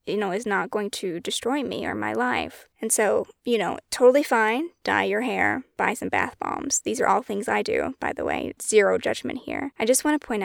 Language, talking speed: English, 235 wpm